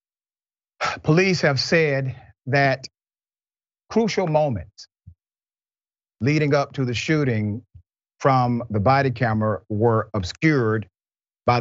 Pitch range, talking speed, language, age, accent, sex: 115-155 Hz, 95 wpm, English, 40-59, American, male